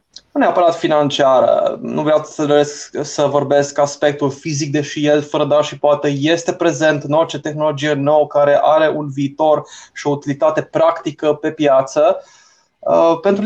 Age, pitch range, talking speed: 20-39, 150-180 Hz, 140 wpm